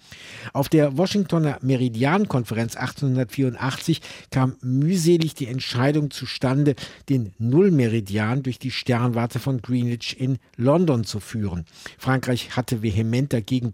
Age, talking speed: 60-79, 110 wpm